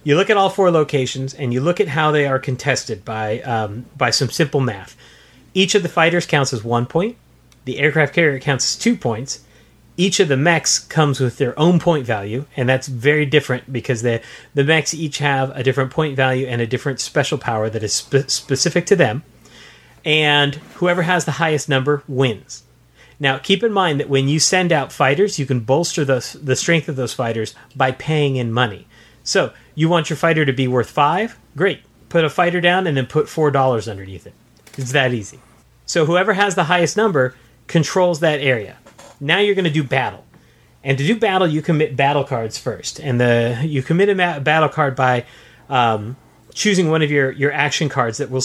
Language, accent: English, American